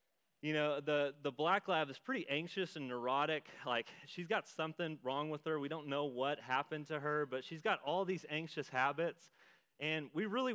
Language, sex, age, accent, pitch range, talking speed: English, male, 30-49, American, 135-165 Hz, 200 wpm